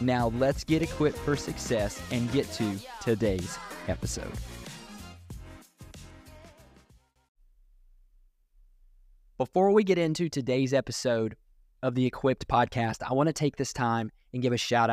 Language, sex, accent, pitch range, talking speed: English, male, American, 110-145 Hz, 120 wpm